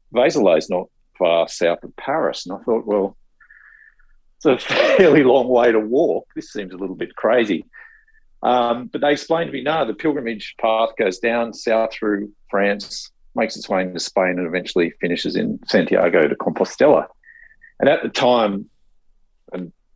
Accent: Australian